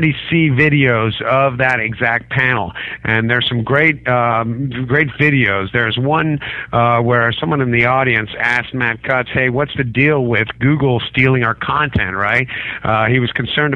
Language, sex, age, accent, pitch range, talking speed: English, male, 50-69, American, 115-135 Hz, 165 wpm